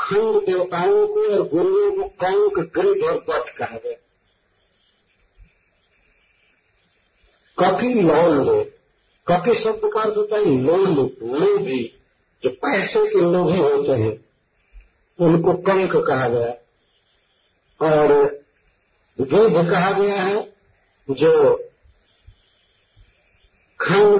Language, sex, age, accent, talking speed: Hindi, male, 50-69, native, 100 wpm